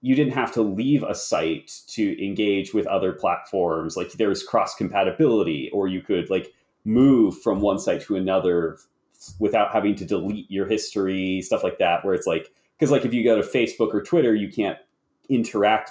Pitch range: 100-135 Hz